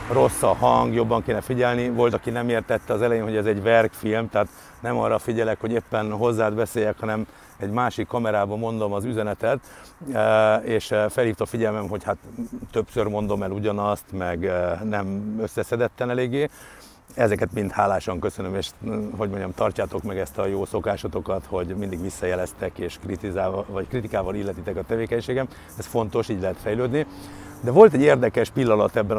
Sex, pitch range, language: male, 100-120 Hz, Hungarian